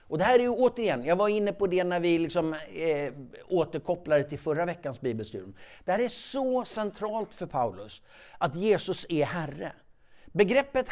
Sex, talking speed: male, 165 wpm